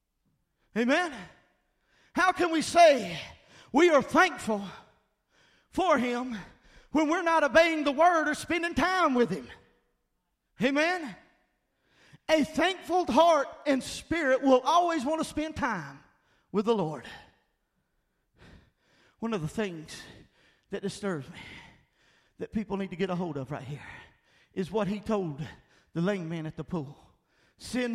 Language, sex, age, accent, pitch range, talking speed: English, male, 40-59, American, 175-255 Hz, 135 wpm